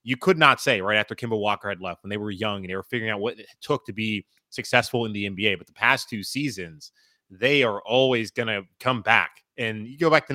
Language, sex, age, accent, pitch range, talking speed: English, male, 20-39, American, 105-140 Hz, 260 wpm